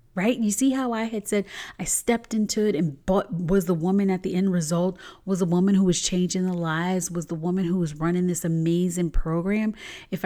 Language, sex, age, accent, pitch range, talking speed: English, female, 30-49, American, 175-230 Hz, 215 wpm